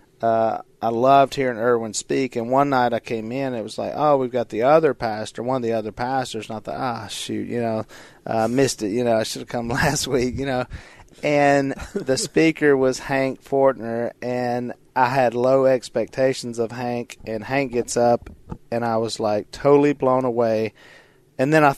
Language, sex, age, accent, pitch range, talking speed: English, male, 40-59, American, 115-135 Hz, 200 wpm